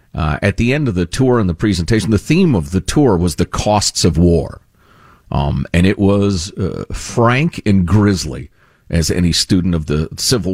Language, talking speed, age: English, 195 wpm, 50-69